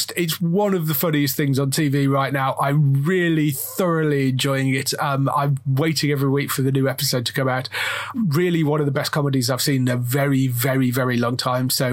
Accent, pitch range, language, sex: British, 135-170 Hz, English, male